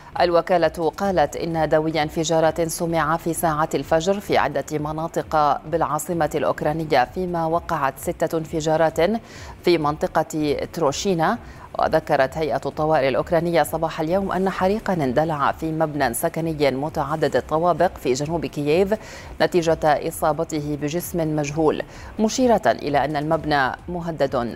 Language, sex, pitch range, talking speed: Arabic, female, 150-175 Hz, 115 wpm